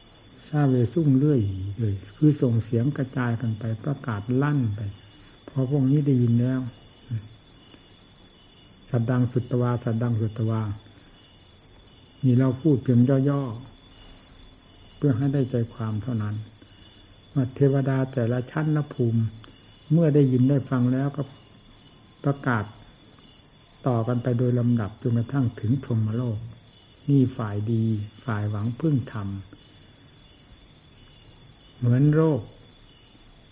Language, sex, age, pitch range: Thai, male, 60-79, 110-140 Hz